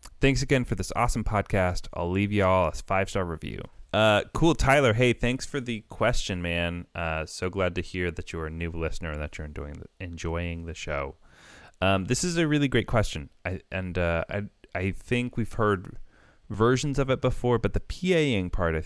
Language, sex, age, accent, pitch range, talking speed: English, male, 20-39, American, 80-100 Hz, 205 wpm